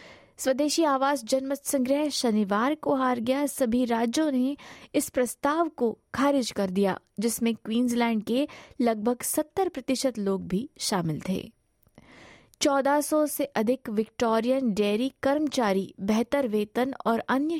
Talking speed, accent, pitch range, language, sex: 125 wpm, native, 215-280 Hz, Hindi, female